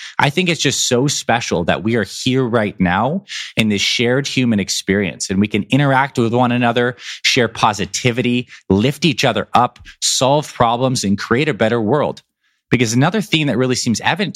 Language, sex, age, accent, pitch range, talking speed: English, male, 20-39, American, 110-140 Hz, 185 wpm